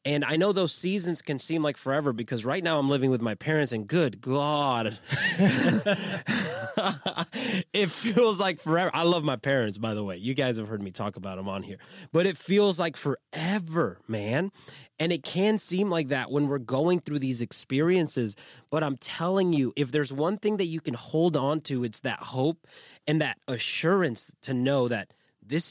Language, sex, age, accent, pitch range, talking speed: English, male, 30-49, American, 125-170 Hz, 195 wpm